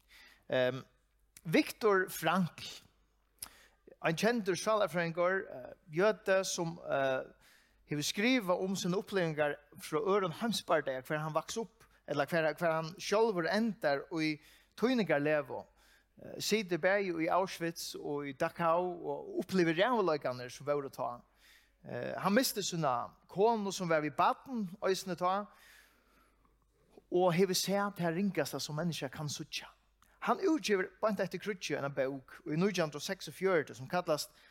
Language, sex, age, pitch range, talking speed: English, male, 30-49, 155-200 Hz, 120 wpm